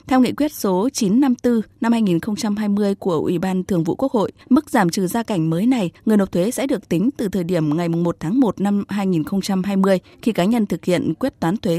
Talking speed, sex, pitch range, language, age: 215 wpm, female, 180-235 Hz, Vietnamese, 20-39